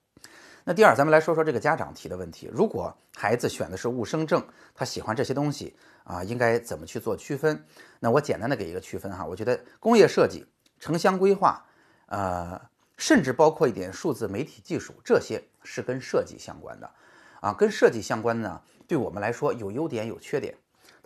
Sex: male